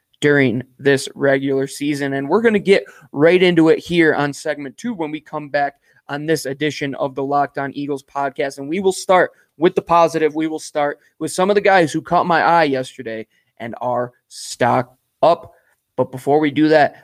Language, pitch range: English, 135-155 Hz